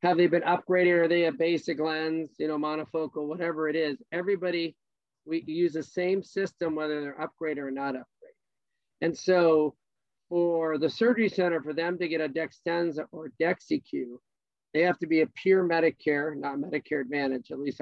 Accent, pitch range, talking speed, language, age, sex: American, 150-175 Hz, 180 wpm, English, 50-69, male